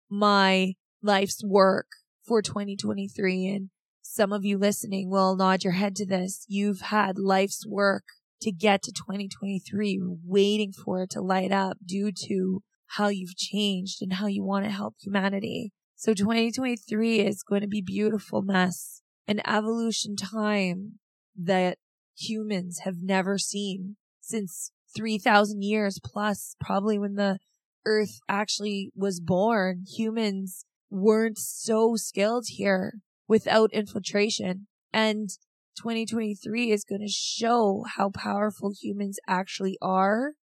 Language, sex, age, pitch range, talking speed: English, female, 20-39, 190-210 Hz, 130 wpm